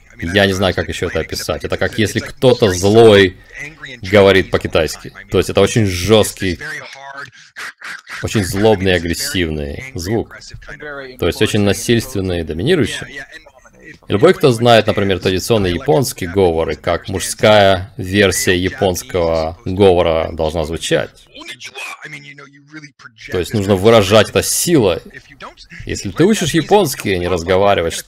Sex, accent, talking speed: male, native, 120 wpm